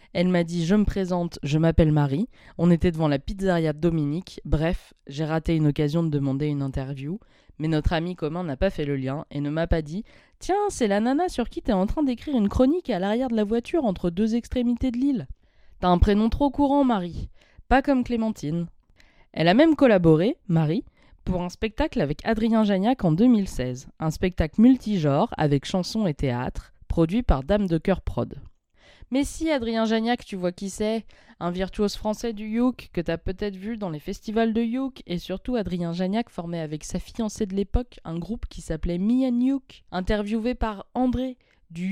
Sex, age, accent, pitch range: female, 20-39, French, 170-235 Hz